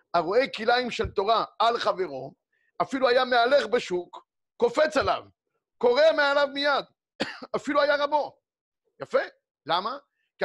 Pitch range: 180-290 Hz